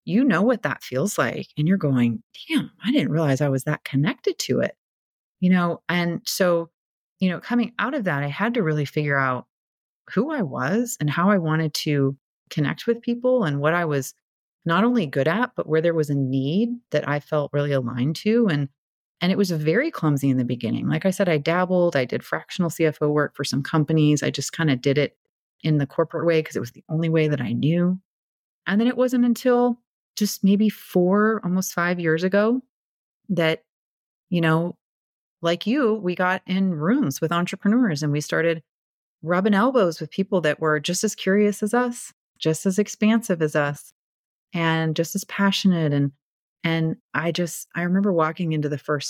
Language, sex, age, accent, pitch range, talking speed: English, female, 30-49, American, 150-200 Hz, 200 wpm